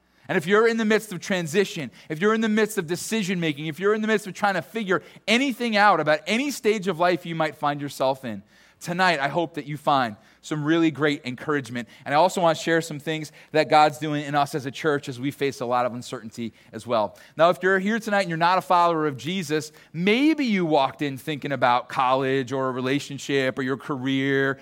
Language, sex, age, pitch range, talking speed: English, male, 30-49, 145-200 Hz, 235 wpm